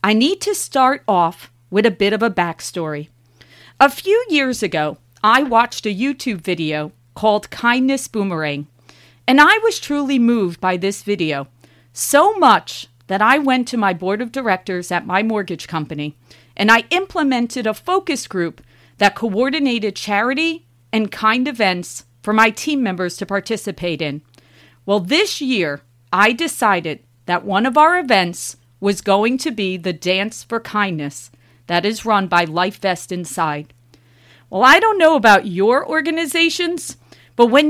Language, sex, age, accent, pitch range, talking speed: English, female, 40-59, American, 175-255 Hz, 155 wpm